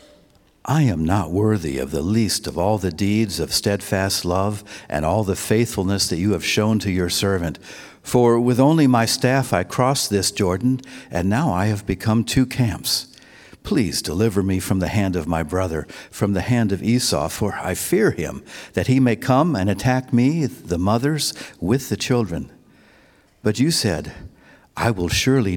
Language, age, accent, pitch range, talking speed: English, 60-79, American, 95-125 Hz, 180 wpm